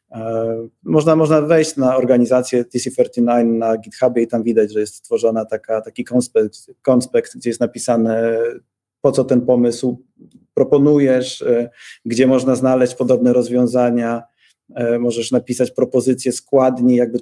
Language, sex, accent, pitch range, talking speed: Polish, male, native, 120-140 Hz, 125 wpm